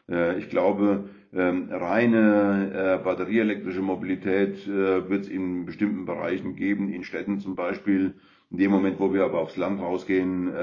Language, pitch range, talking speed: German, 90-100 Hz, 135 wpm